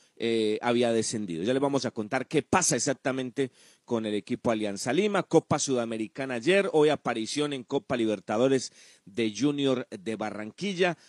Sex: male